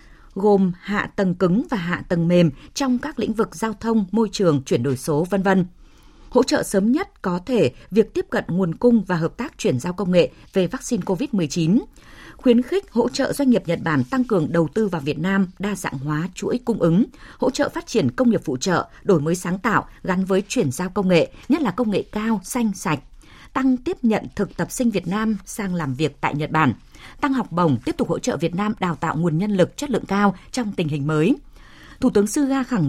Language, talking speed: Vietnamese, 230 wpm